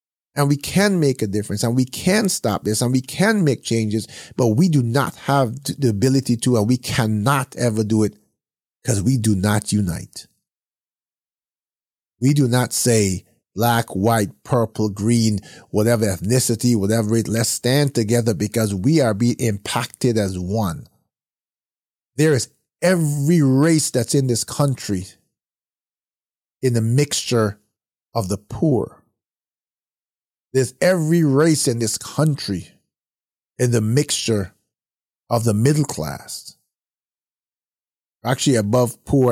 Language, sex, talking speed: English, male, 135 wpm